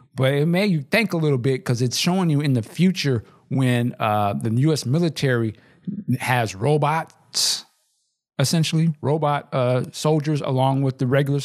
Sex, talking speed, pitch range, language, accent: male, 155 wpm, 120-155 Hz, English, American